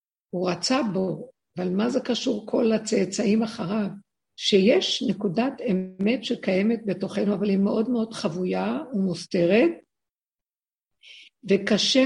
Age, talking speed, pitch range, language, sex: 50-69, 110 wpm, 185-230 Hz, Hebrew, female